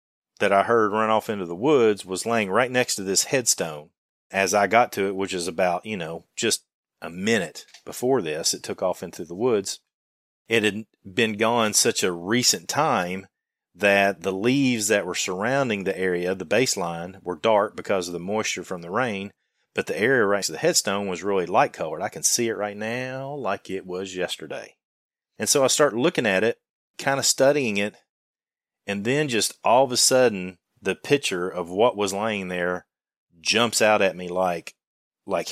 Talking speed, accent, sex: 195 wpm, American, male